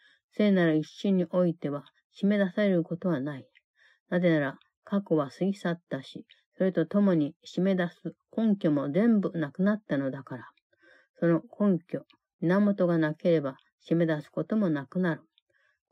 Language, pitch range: Japanese, 150-190 Hz